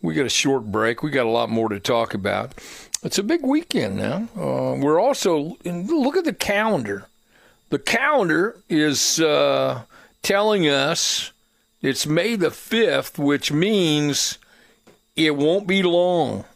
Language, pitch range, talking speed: English, 130-170 Hz, 150 wpm